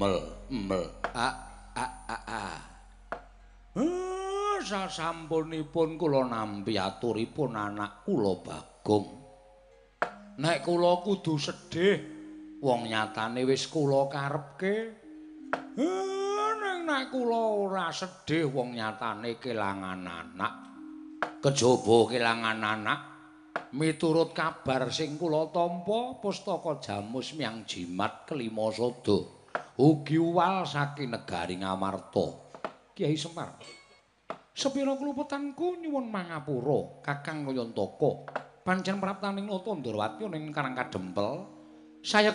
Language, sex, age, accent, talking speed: Indonesian, male, 50-69, native, 95 wpm